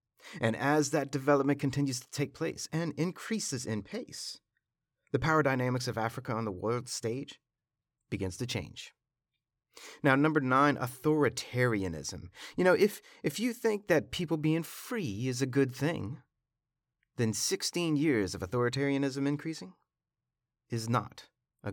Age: 30-49